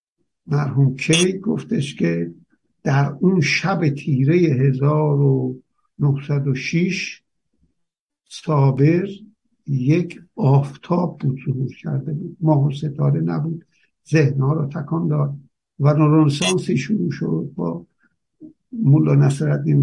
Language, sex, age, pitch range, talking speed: Persian, male, 60-79, 140-175 Hz, 90 wpm